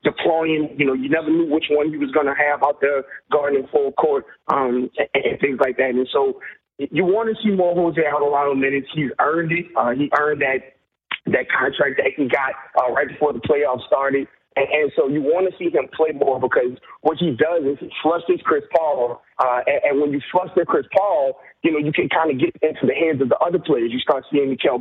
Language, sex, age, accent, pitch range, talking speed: English, male, 30-49, American, 140-175 Hz, 240 wpm